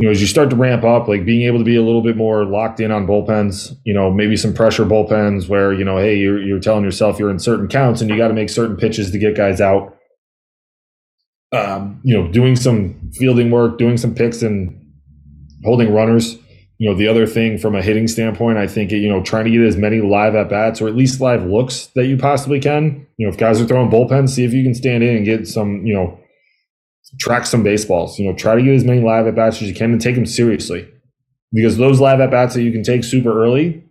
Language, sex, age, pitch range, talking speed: English, male, 20-39, 100-120 Hz, 250 wpm